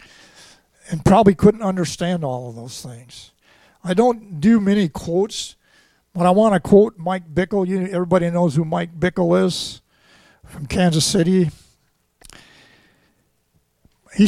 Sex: male